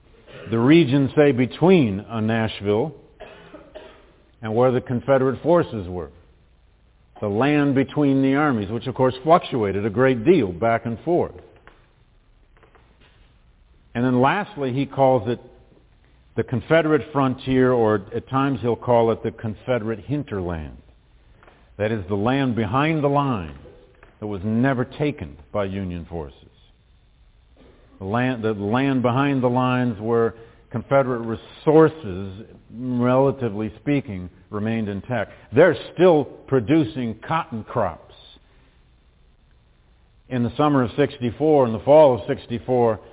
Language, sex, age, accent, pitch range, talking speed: English, male, 50-69, American, 105-135 Hz, 120 wpm